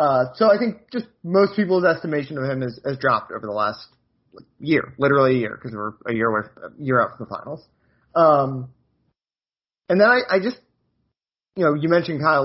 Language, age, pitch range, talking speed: English, 30-49, 125-165 Hz, 200 wpm